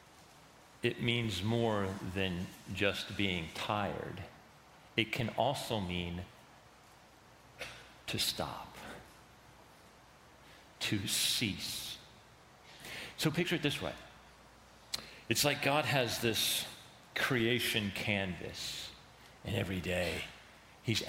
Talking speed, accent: 90 wpm, American